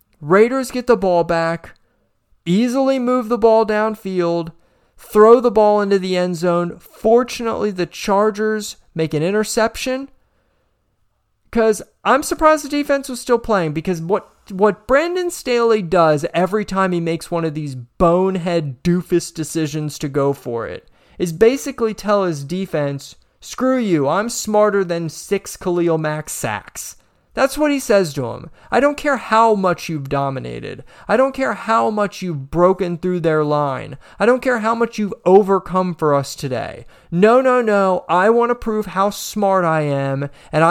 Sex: male